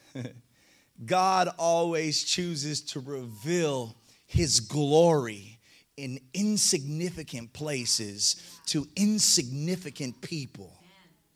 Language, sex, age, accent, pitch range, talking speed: English, male, 30-49, American, 155-245 Hz, 70 wpm